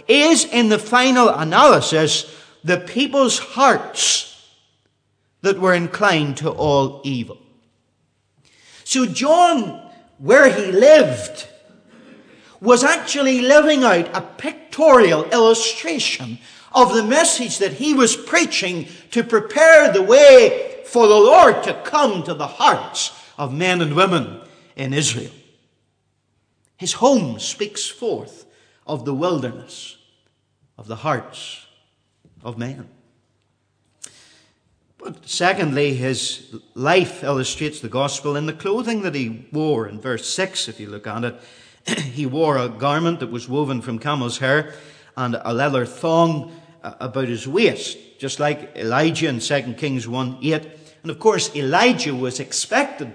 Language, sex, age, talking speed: English, male, 50-69, 130 wpm